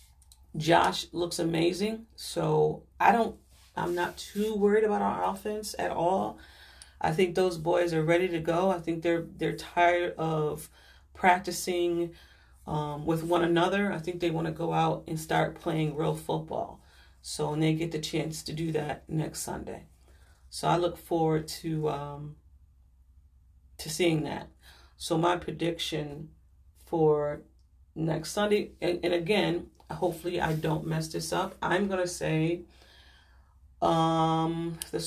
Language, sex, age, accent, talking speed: English, female, 40-59, American, 145 wpm